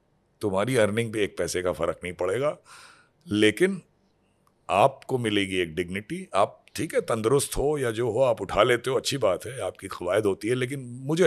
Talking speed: 185 wpm